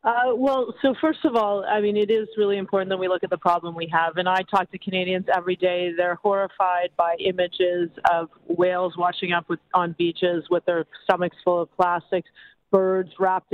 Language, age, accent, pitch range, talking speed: English, 40-59, American, 175-210 Hz, 205 wpm